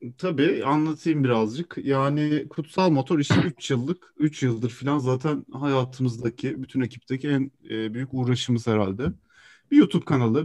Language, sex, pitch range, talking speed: Turkish, male, 115-135 Hz, 140 wpm